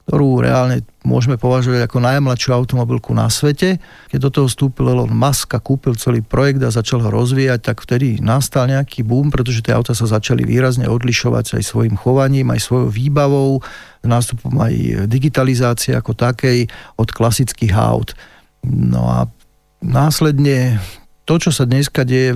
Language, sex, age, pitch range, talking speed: Slovak, male, 40-59, 120-140 Hz, 155 wpm